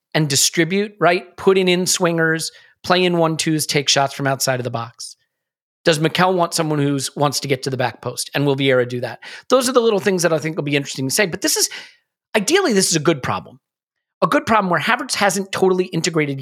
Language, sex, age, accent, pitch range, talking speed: English, male, 40-59, American, 135-180 Hz, 230 wpm